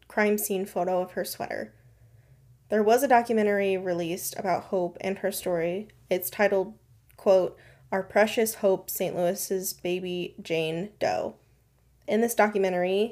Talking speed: 135 wpm